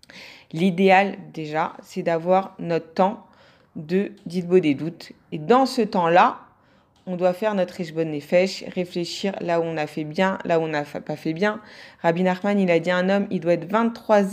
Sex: female